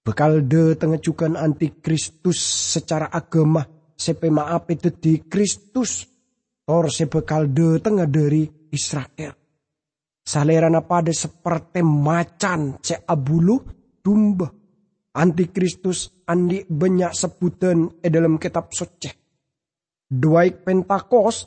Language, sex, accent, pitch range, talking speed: English, male, Indonesian, 165-205 Hz, 90 wpm